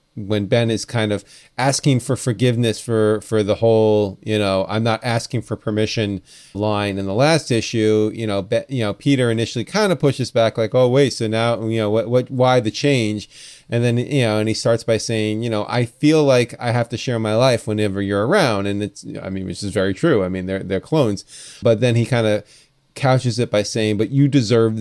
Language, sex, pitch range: English, male, 105-140 Hz